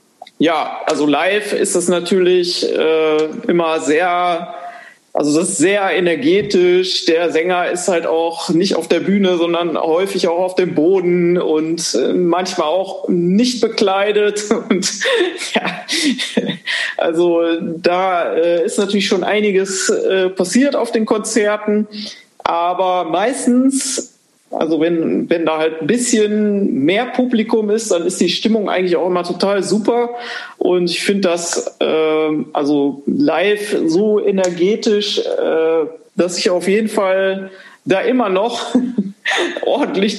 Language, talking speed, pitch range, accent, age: German, 135 wpm, 175-225 Hz, German, 40-59